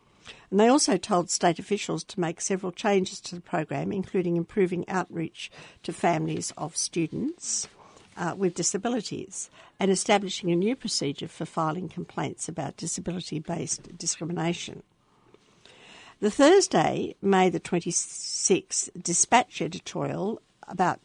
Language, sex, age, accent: English, female, 60-79, Australian